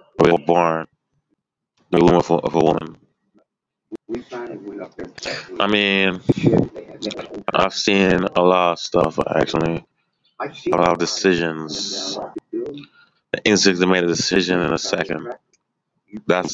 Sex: male